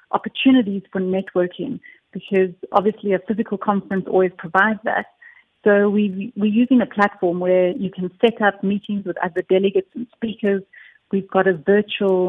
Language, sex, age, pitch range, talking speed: English, female, 40-59, 185-210 Hz, 155 wpm